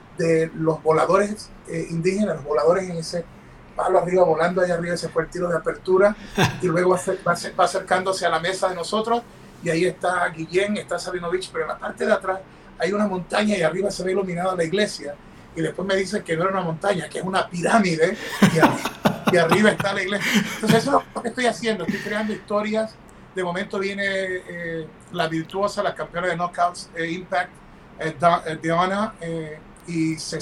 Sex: male